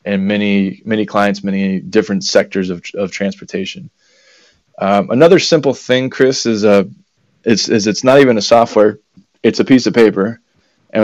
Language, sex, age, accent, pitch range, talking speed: English, male, 20-39, American, 100-115 Hz, 165 wpm